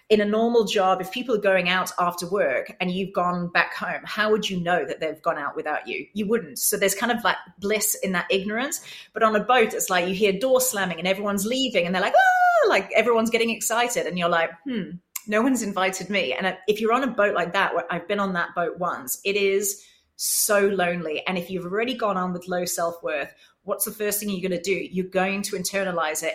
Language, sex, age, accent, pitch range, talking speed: English, female, 30-49, British, 175-210 Hz, 240 wpm